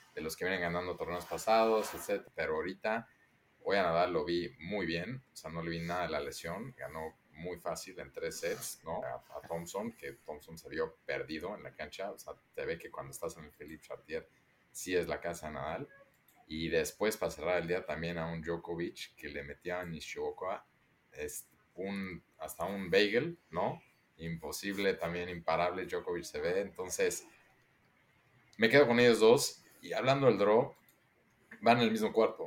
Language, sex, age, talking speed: Spanish, male, 30-49, 190 wpm